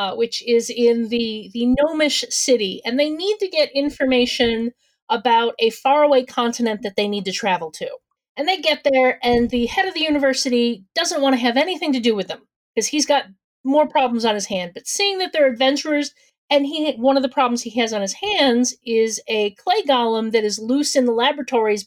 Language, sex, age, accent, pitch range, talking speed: English, female, 40-59, American, 230-290 Hz, 210 wpm